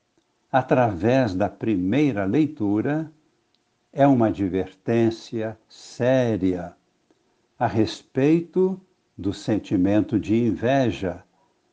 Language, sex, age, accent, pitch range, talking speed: Portuguese, male, 60-79, Brazilian, 105-150 Hz, 70 wpm